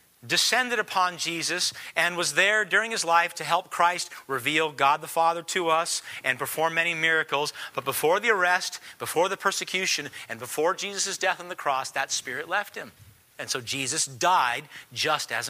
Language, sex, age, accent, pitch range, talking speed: English, male, 40-59, American, 150-190 Hz, 180 wpm